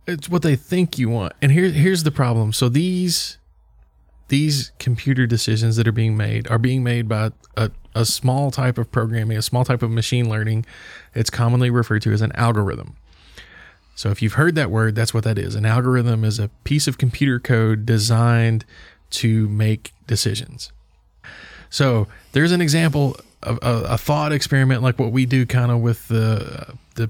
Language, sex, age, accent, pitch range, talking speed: English, male, 20-39, American, 110-125 Hz, 185 wpm